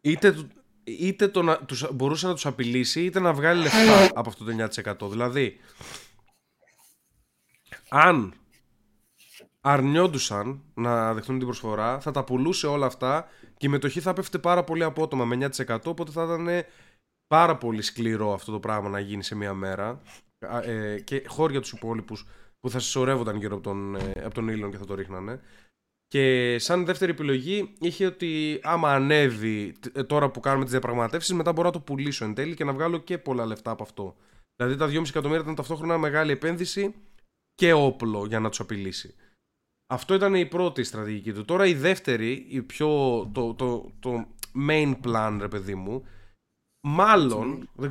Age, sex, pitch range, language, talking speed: 20-39, male, 110-160 Hz, Greek, 165 wpm